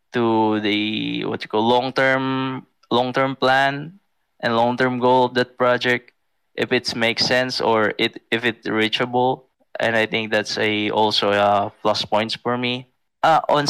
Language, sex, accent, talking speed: English, male, Filipino, 160 wpm